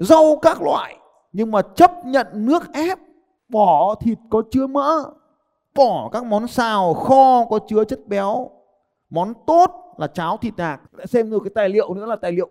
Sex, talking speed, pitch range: male, 180 wpm, 200-260 Hz